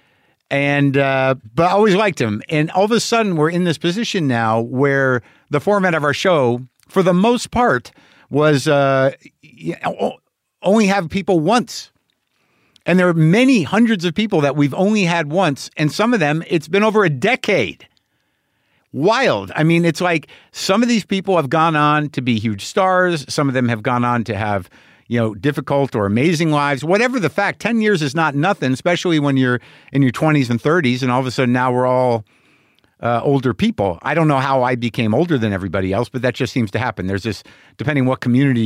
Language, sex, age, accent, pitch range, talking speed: English, male, 50-69, American, 120-180 Hz, 205 wpm